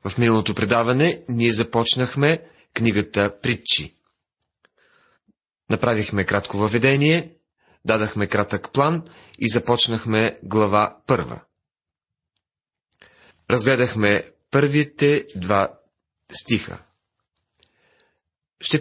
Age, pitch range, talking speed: 40-59, 105-135 Hz, 70 wpm